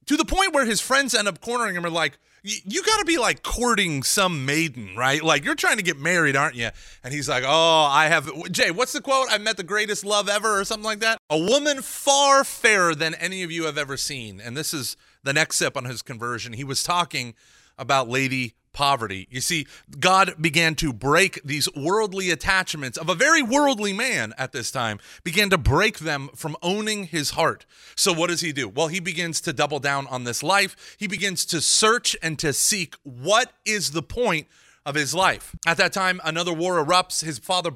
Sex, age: male, 30-49